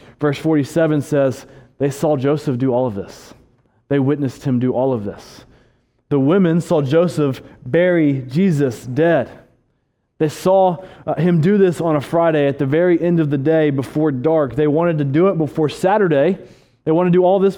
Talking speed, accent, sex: 185 wpm, American, male